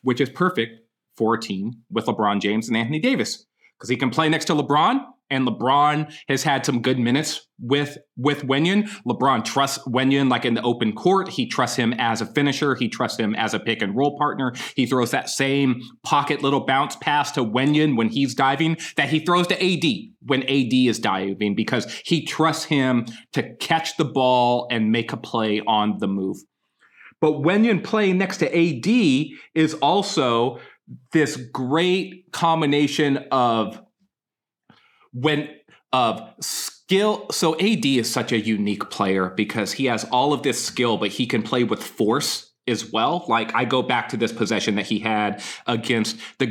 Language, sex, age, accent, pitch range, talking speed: English, male, 30-49, American, 120-155 Hz, 180 wpm